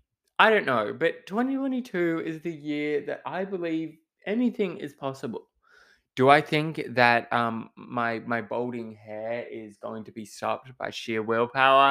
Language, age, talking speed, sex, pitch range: English, 20-39, 155 wpm, male, 120-205 Hz